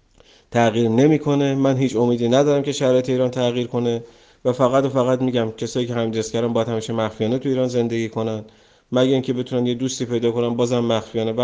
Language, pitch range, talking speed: English, 115-135 Hz, 190 wpm